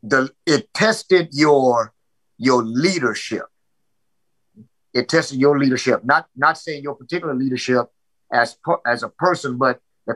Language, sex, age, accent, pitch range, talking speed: English, male, 50-69, American, 125-155 Hz, 135 wpm